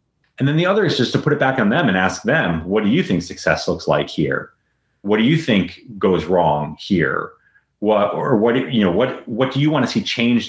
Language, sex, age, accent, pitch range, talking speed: English, male, 30-49, American, 90-125 Hz, 245 wpm